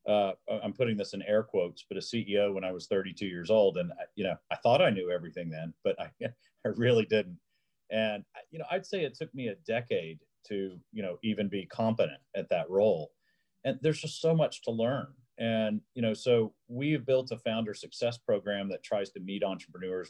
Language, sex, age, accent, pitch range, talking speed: English, male, 40-59, American, 100-120 Hz, 210 wpm